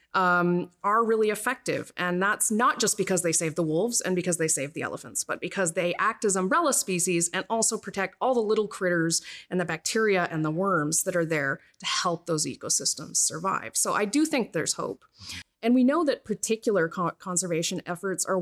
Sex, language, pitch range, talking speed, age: female, English, 170-205 Hz, 200 wpm, 30-49